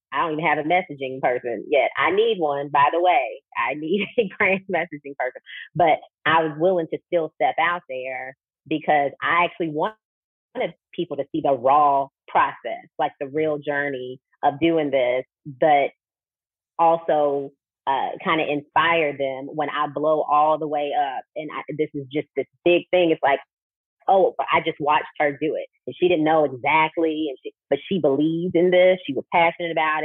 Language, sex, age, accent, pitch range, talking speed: English, female, 30-49, American, 145-175 Hz, 185 wpm